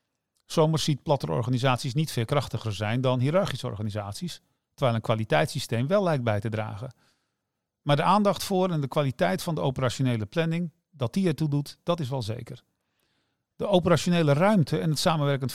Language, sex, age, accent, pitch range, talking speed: Dutch, male, 50-69, Dutch, 125-160 Hz, 165 wpm